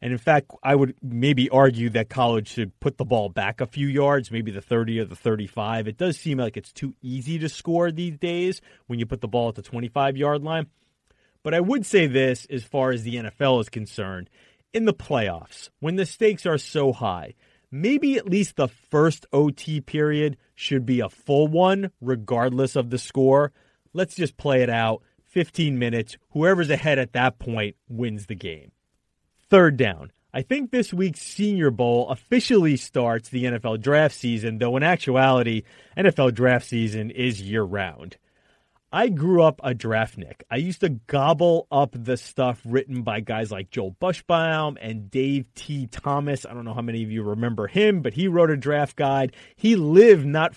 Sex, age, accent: male, 30-49, American